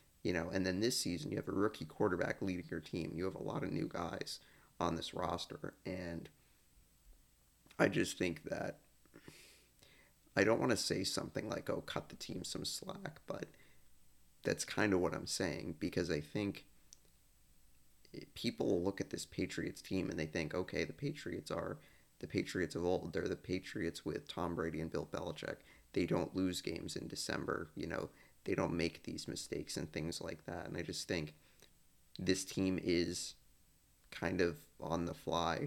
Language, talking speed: English, 180 wpm